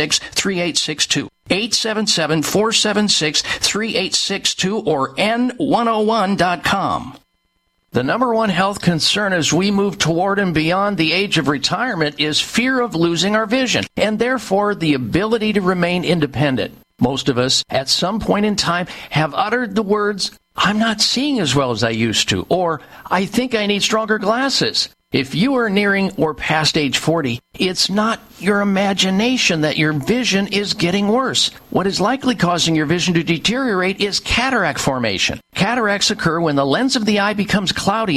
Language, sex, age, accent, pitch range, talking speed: English, male, 50-69, American, 165-220 Hz, 150 wpm